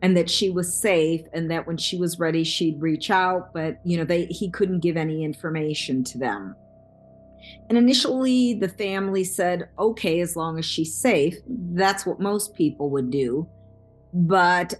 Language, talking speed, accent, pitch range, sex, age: English, 175 wpm, American, 160-185 Hz, female, 50-69